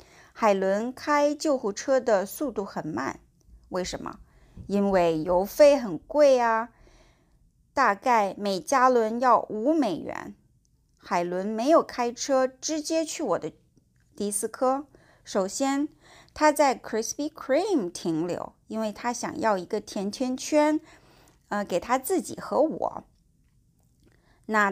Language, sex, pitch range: English, female, 205-280 Hz